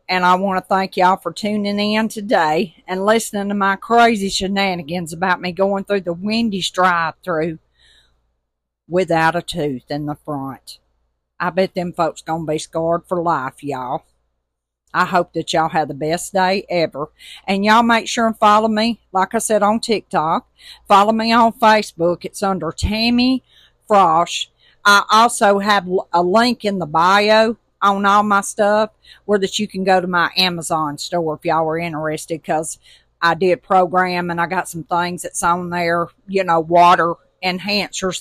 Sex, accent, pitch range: female, American, 165-200 Hz